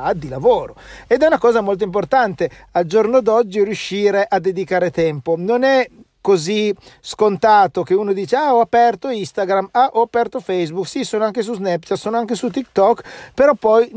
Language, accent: Italian, native